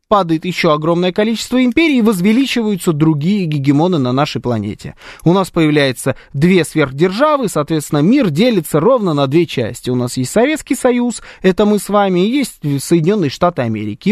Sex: male